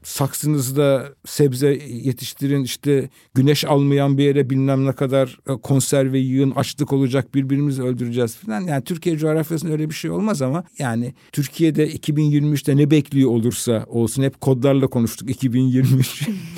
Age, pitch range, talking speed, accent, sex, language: 50-69, 125-150 Hz, 135 wpm, native, male, Turkish